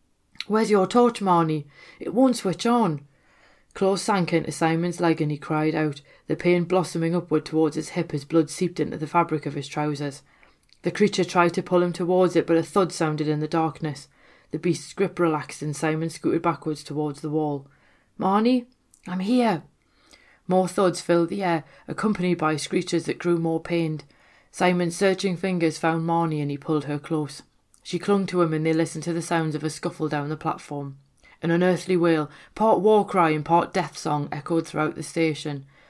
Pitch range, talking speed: 150-175 Hz, 190 wpm